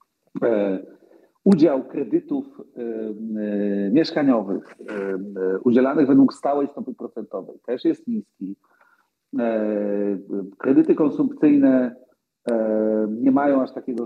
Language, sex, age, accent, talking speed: Polish, male, 50-69, native, 75 wpm